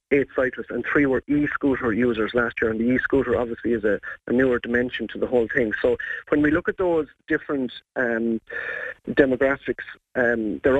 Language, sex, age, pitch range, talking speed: English, male, 30-49, 120-145 Hz, 185 wpm